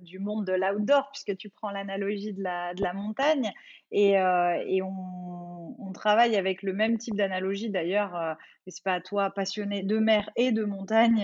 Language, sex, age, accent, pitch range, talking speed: French, female, 20-39, French, 185-225 Hz, 200 wpm